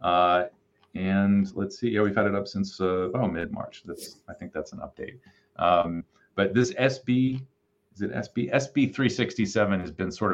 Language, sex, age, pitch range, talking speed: English, male, 30-49, 90-110 Hz, 180 wpm